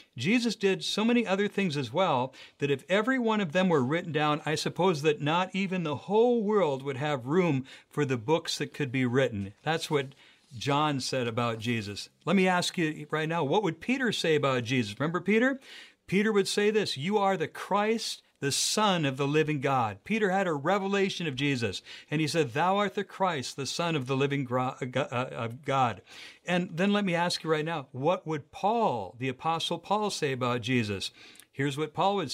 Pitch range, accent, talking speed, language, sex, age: 140-195 Hz, American, 200 wpm, English, male, 60-79